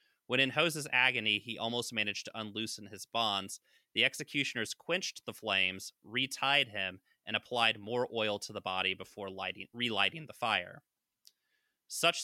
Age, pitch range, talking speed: 30-49, 100-135 Hz, 145 wpm